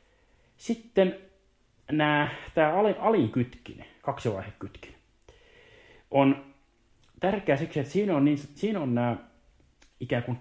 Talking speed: 100 wpm